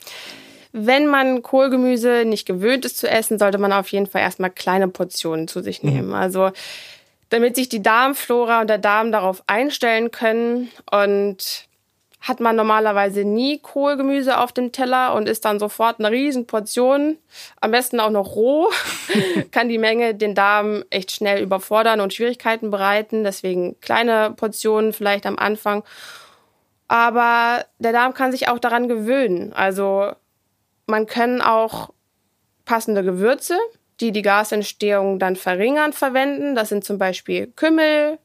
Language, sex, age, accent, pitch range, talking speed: German, female, 20-39, German, 195-245 Hz, 145 wpm